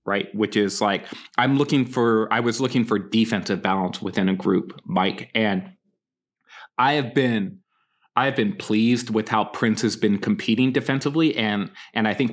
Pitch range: 110-145 Hz